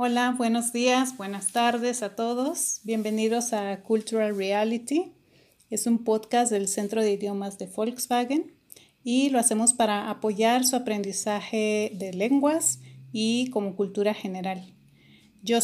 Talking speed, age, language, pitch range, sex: 130 wpm, 30-49, Spanish, 205-240 Hz, female